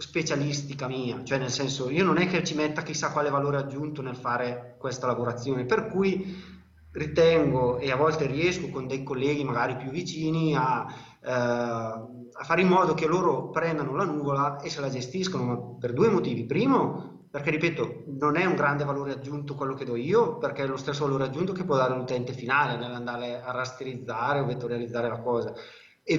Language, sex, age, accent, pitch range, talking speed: Italian, male, 30-49, native, 130-165 Hz, 190 wpm